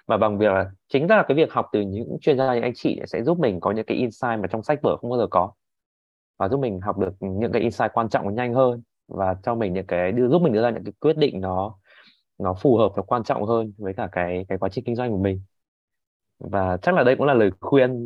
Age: 20-39